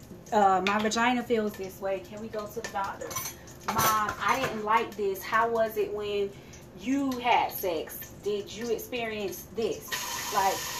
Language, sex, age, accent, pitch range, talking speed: English, female, 20-39, American, 190-235 Hz, 160 wpm